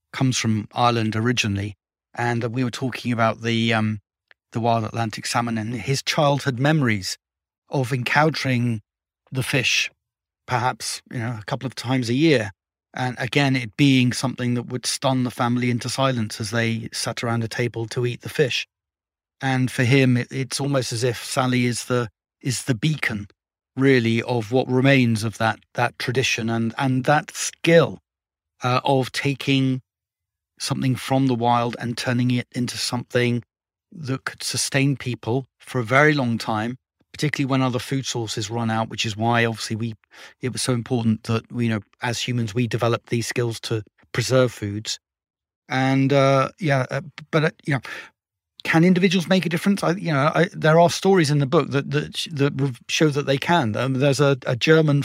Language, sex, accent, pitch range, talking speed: English, male, British, 115-135 Hz, 180 wpm